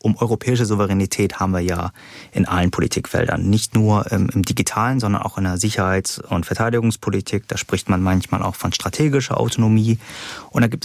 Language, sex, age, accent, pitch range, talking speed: German, male, 30-49, German, 110-140 Hz, 170 wpm